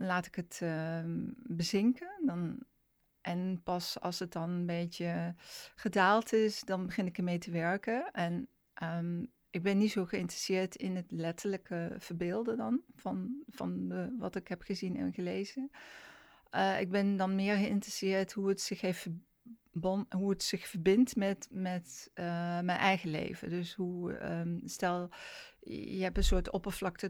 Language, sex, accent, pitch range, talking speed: Dutch, female, Dutch, 175-205 Hz, 155 wpm